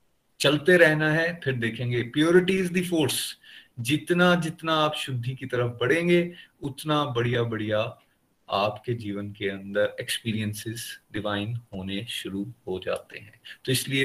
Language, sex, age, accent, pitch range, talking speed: Hindi, male, 30-49, native, 115-150 Hz, 125 wpm